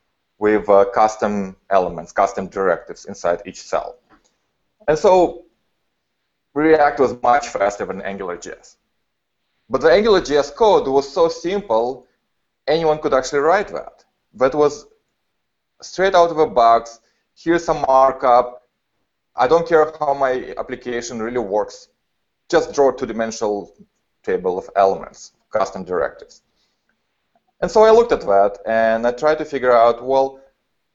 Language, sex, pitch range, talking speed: English, male, 115-165 Hz, 135 wpm